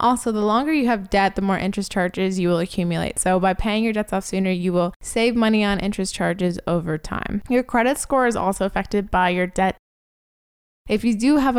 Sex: female